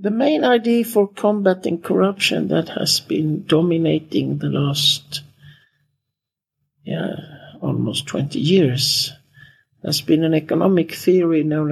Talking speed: 110 wpm